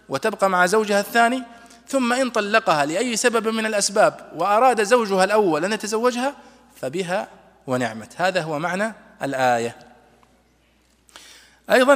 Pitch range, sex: 160-220 Hz, male